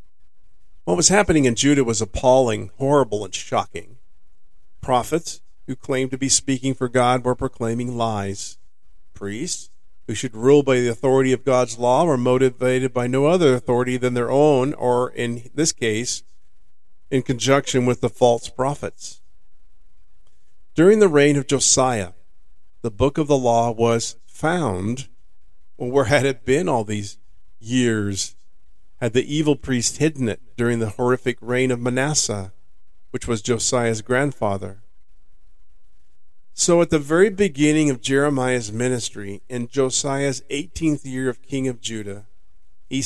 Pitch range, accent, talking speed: 105-135 Hz, American, 145 wpm